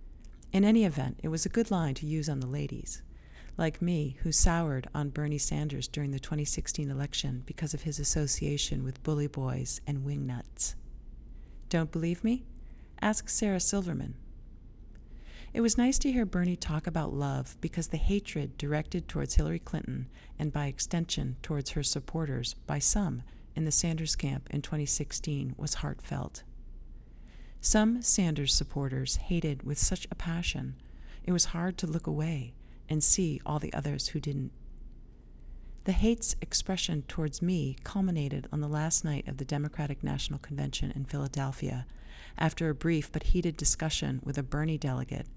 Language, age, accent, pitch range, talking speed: English, 40-59, American, 135-170 Hz, 155 wpm